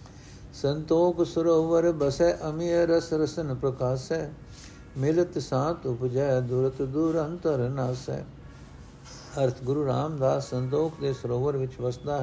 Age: 60-79